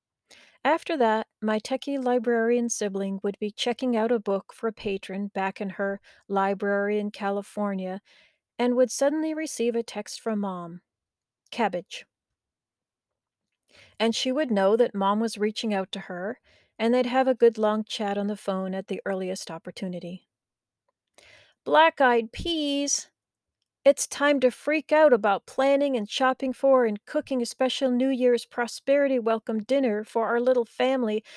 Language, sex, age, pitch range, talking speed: English, female, 40-59, 200-265 Hz, 155 wpm